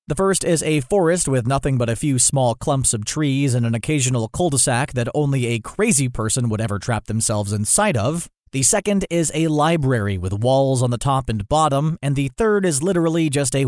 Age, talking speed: 30-49, 210 wpm